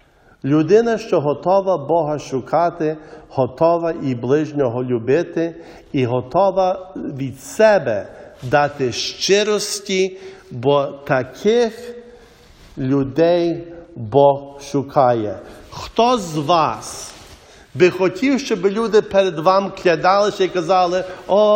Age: 50-69